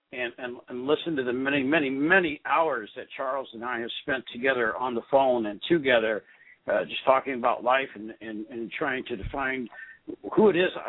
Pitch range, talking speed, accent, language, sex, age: 120-150 Hz, 200 wpm, American, English, male, 60-79